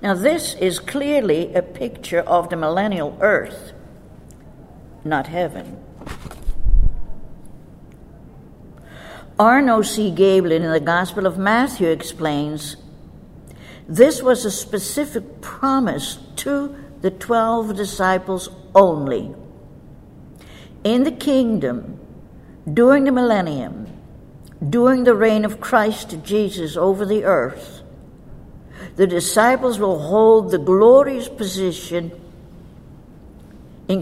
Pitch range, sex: 170-230 Hz, female